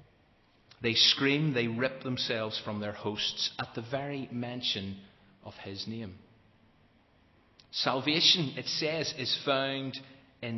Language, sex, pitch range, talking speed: English, male, 110-130 Hz, 120 wpm